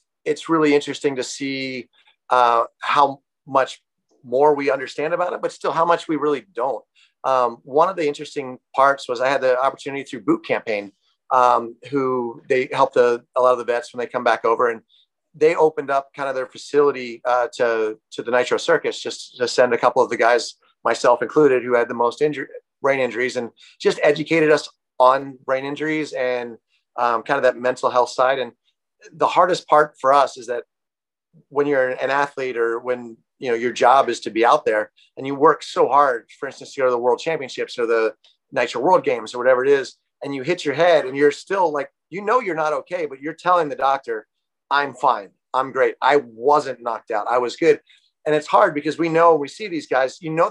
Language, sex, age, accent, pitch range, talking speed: English, male, 30-49, American, 130-170 Hz, 215 wpm